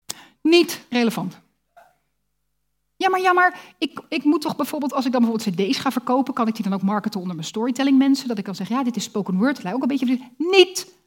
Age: 30-49